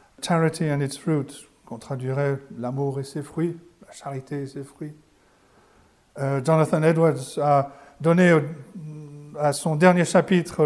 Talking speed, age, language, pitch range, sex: 165 wpm, 50-69, French, 150-195 Hz, male